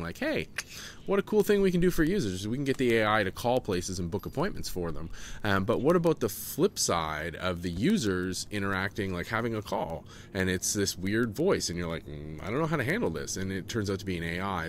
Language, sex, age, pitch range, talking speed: English, male, 30-49, 95-120 Hz, 255 wpm